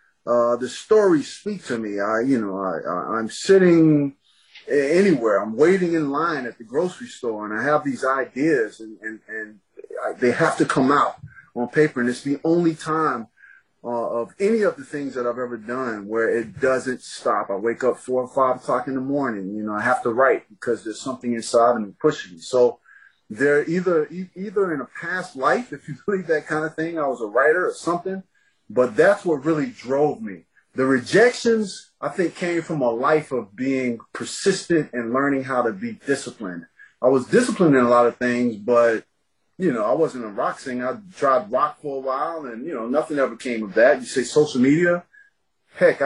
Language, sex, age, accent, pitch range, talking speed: English, male, 30-49, American, 120-170 Hz, 210 wpm